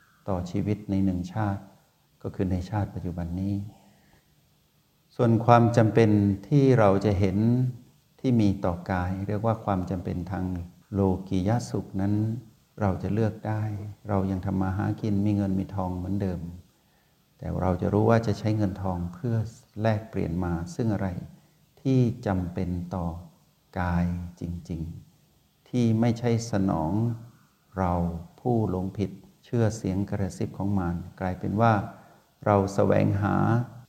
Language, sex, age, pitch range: Thai, male, 60-79, 90-110 Hz